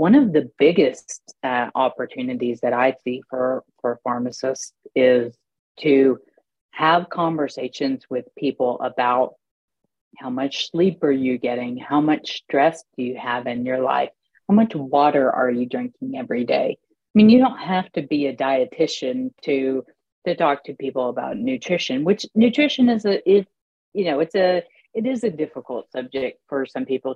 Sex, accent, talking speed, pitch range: female, American, 165 wpm, 130-175 Hz